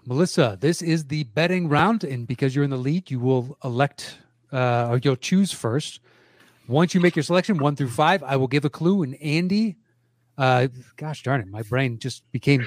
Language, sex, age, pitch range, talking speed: English, male, 30-49, 125-165 Hz, 205 wpm